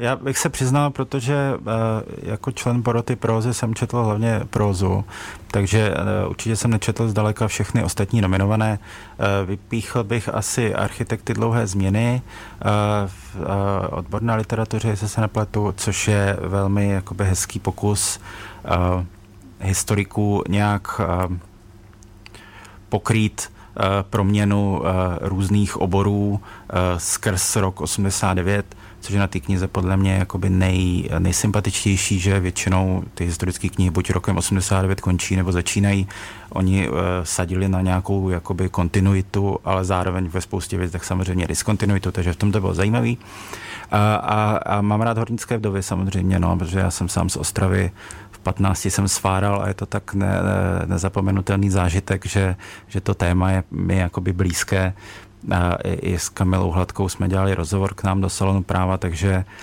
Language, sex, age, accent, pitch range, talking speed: Czech, male, 30-49, native, 95-105 Hz, 145 wpm